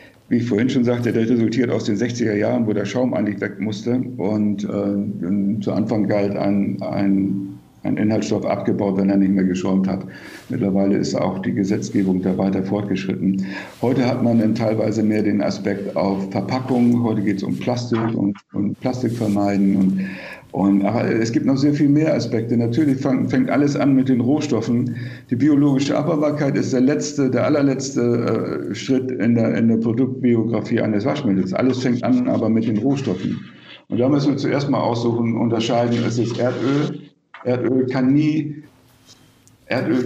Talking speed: 170 wpm